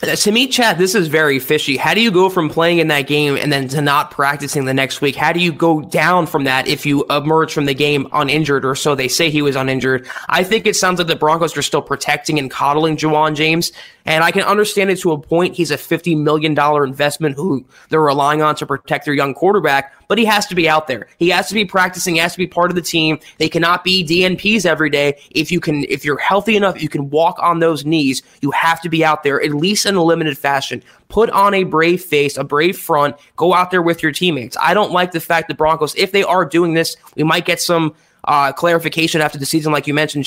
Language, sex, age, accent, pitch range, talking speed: English, male, 20-39, American, 145-175 Hz, 255 wpm